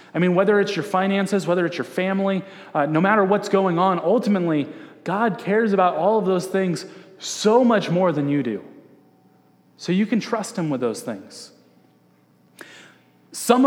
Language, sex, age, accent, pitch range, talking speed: English, male, 30-49, American, 160-200 Hz, 170 wpm